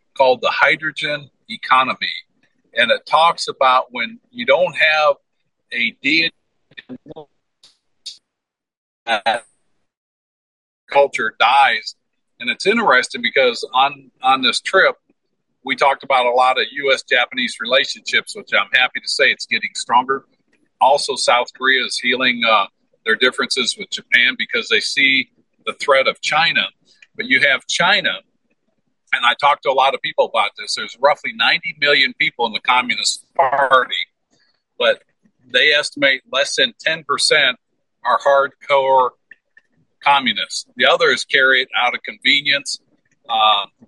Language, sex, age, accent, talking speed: English, male, 50-69, American, 135 wpm